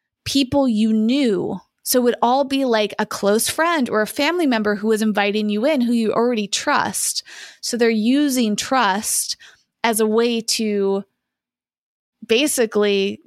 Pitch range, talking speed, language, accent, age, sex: 200-235 Hz, 155 wpm, English, American, 20-39, female